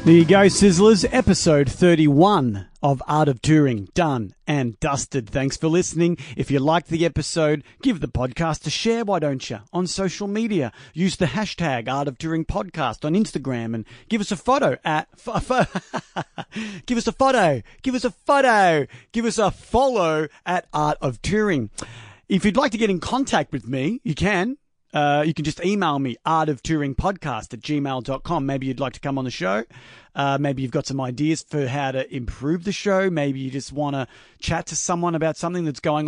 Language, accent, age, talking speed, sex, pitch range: English, Australian, 40-59, 195 wpm, male, 140-180 Hz